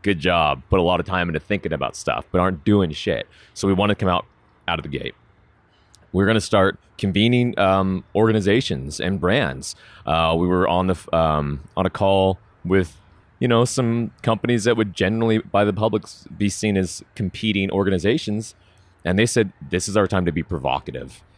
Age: 30-49